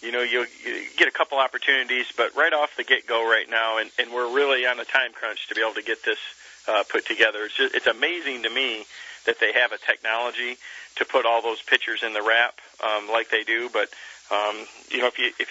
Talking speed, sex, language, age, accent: 240 wpm, male, English, 40-59, American